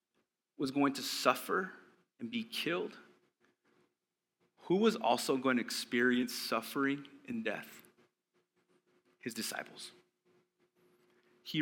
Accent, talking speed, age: American, 100 wpm, 30-49